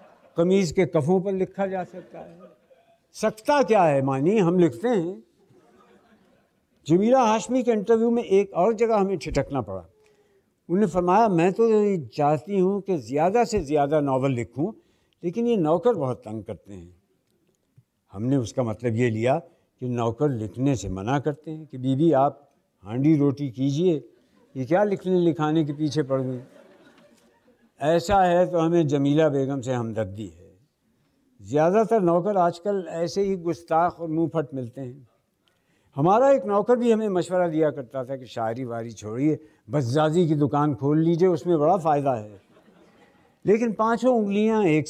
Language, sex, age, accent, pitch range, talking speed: Hindi, male, 60-79, native, 130-190 Hz, 155 wpm